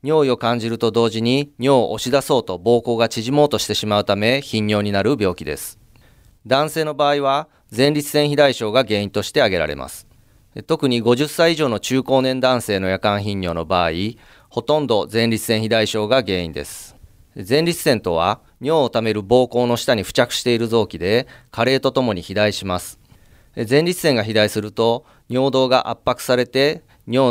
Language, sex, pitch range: Japanese, male, 105-135 Hz